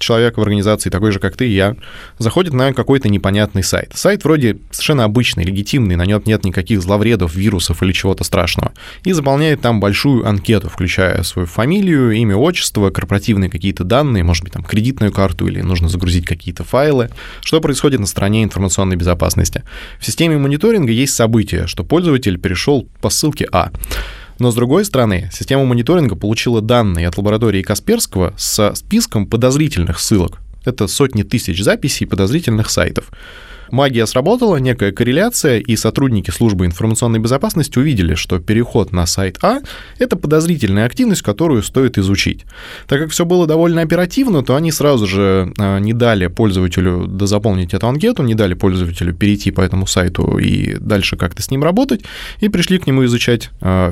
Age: 20-39